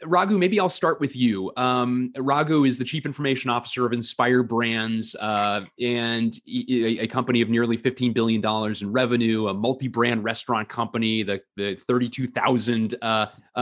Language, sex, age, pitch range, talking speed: English, male, 30-49, 115-140 Hz, 155 wpm